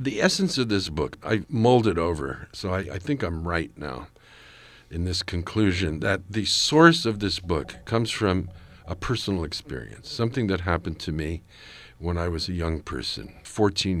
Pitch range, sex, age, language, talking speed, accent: 85-110 Hz, male, 50-69, English, 180 wpm, American